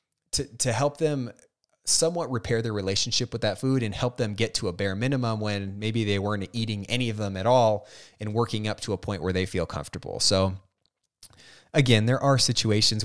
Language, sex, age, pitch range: English, male, 20-39, 95-115 Hz